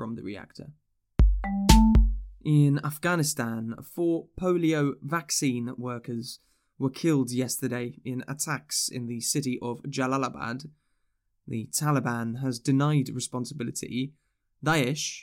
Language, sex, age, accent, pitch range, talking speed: English, male, 10-29, British, 125-150 Hz, 100 wpm